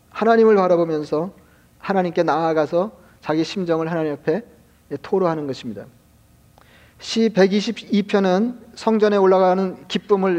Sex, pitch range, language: male, 165-200 Hz, Korean